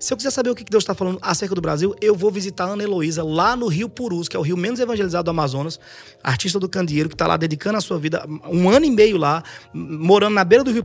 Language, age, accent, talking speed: Portuguese, 20-39, Brazilian, 275 wpm